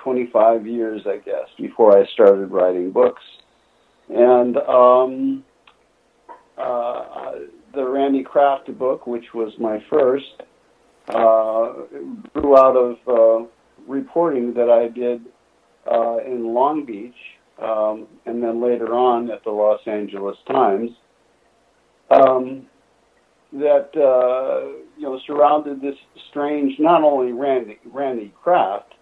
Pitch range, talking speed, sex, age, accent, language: 115-135 Hz, 115 wpm, male, 60-79, American, English